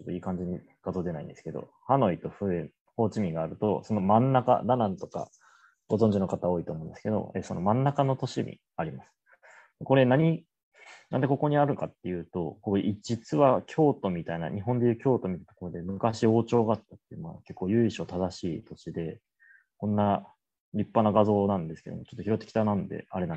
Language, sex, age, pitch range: Japanese, male, 30-49, 100-130 Hz